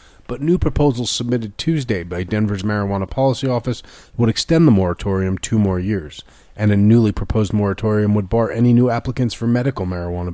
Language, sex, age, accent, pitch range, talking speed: English, male, 30-49, American, 95-115 Hz, 175 wpm